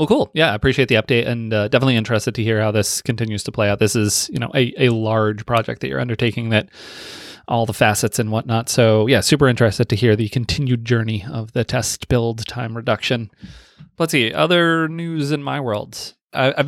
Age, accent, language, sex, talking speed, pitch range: 30-49, American, English, male, 210 wpm, 115-135 Hz